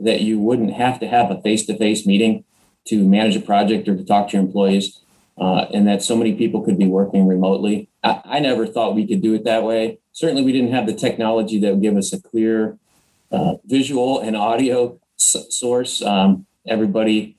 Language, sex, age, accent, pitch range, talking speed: English, male, 30-49, American, 105-125 Hz, 200 wpm